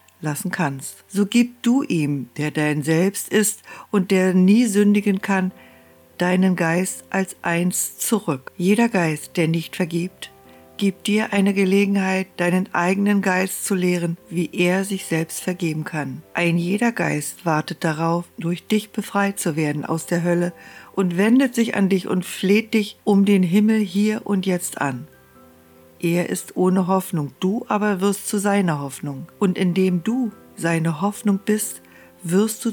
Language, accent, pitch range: German, German, 165-200 Hz